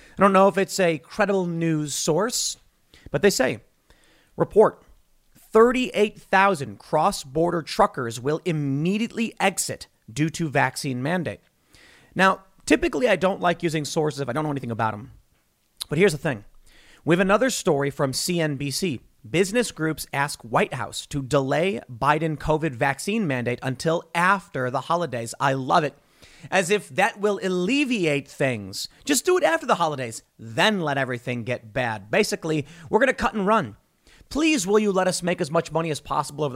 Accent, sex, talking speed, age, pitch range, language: American, male, 165 wpm, 30-49, 140-195 Hz, English